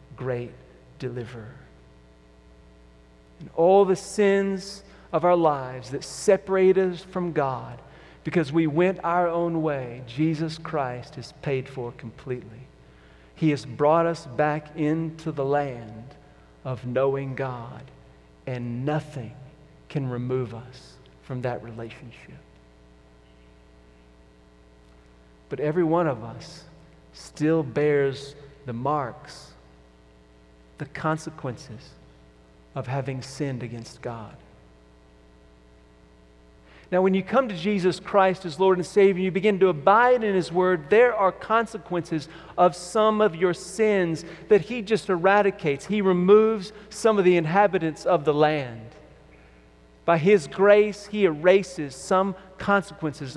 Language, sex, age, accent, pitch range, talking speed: English, male, 40-59, American, 115-180 Hz, 120 wpm